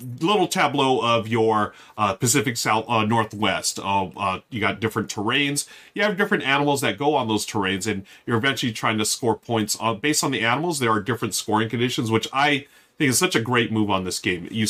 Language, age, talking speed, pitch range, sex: English, 30-49, 220 wpm, 110-145 Hz, male